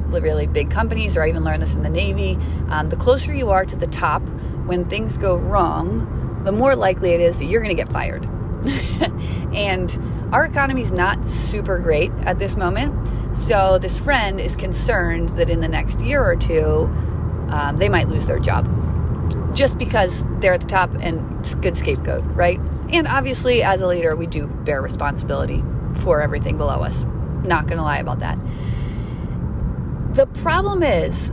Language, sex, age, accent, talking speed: English, female, 30-49, American, 180 wpm